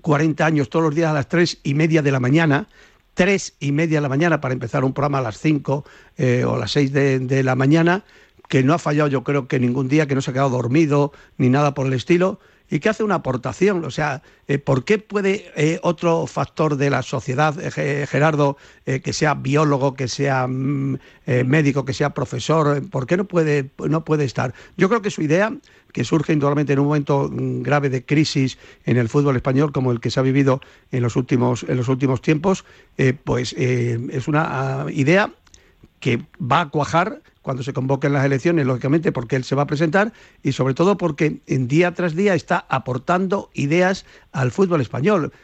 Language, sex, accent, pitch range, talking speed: Spanish, male, Spanish, 135-170 Hz, 195 wpm